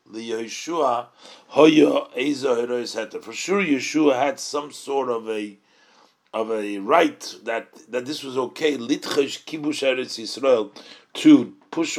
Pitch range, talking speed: 125-175 Hz, 90 wpm